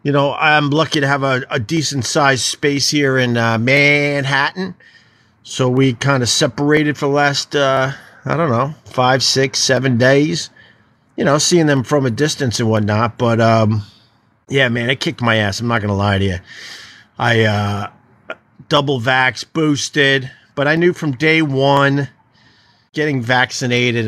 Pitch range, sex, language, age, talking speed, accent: 125-155 Hz, male, English, 50-69, 165 wpm, American